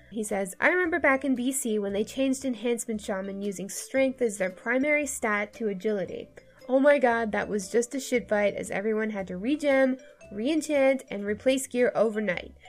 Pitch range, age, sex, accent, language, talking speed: 210-265 Hz, 10-29, female, American, English, 185 wpm